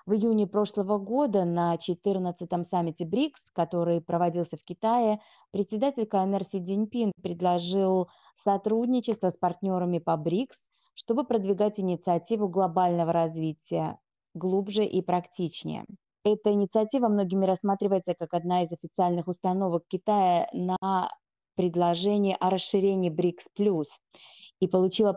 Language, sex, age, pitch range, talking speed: Russian, female, 20-39, 175-210 Hz, 110 wpm